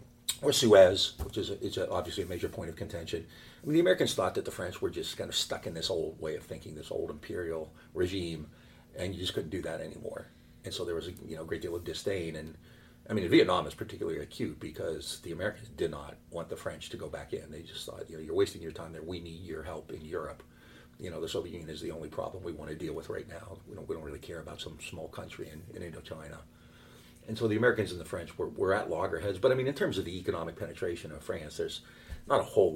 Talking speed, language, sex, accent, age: 260 wpm, English, male, American, 50-69